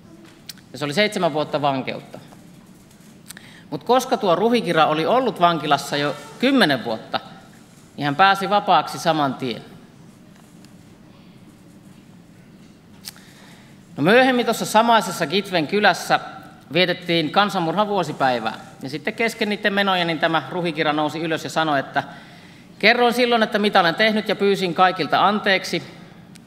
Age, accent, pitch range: 50-69, native, 150-195 Hz